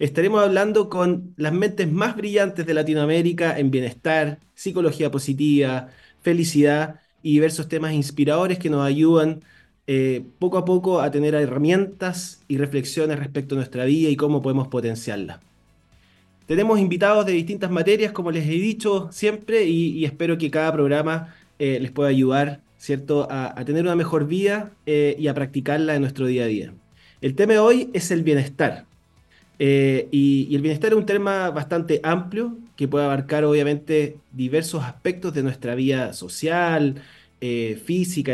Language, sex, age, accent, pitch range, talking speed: Spanish, male, 20-39, Argentinian, 140-180 Hz, 160 wpm